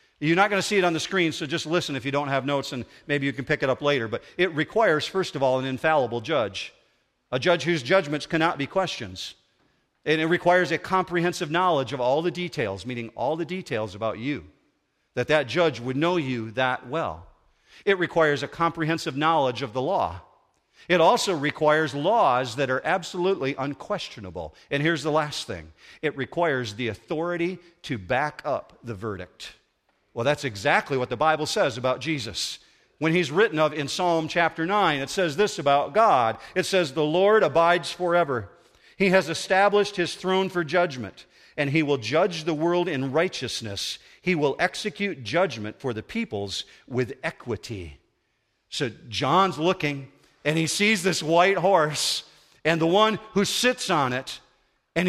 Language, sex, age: English, male, 50-69